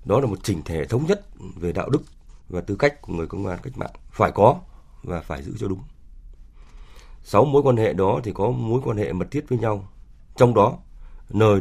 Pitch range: 70-110 Hz